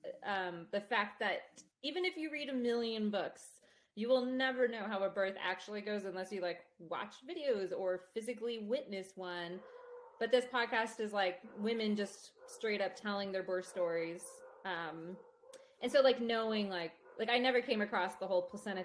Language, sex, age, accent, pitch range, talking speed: English, female, 20-39, American, 190-260 Hz, 180 wpm